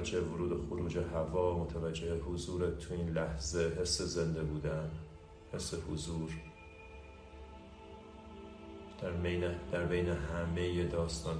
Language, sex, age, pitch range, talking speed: Persian, male, 30-49, 80-90 Hz, 95 wpm